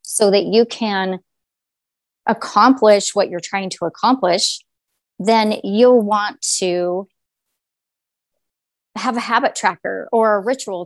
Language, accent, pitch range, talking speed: English, American, 180-215 Hz, 115 wpm